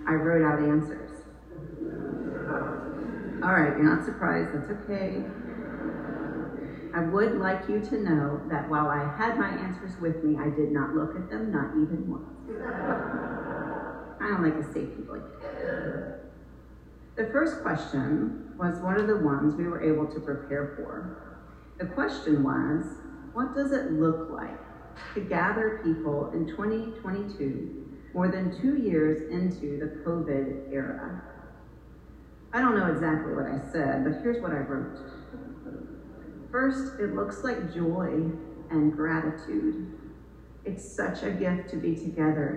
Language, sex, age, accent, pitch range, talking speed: English, female, 40-59, American, 150-195 Hz, 145 wpm